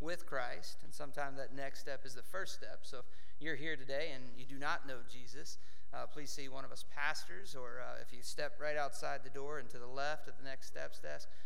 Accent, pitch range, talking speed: American, 95-145 Hz, 245 wpm